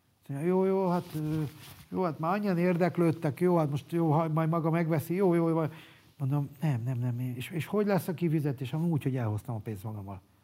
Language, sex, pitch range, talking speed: Hungarian, male, 120-160 Hz, 195 wpm